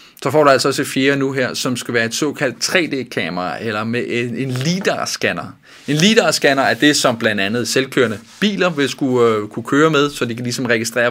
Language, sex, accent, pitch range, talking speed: Danish, male, native, 115-145 Hz, 205 wpm